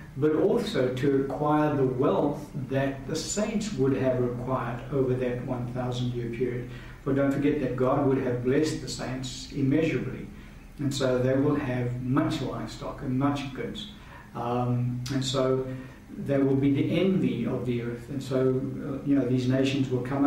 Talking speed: 170 wpm